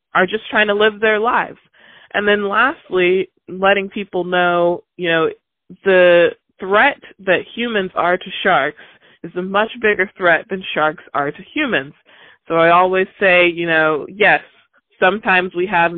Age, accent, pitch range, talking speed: 20-39, American, 165-200 Hz, 160 wpm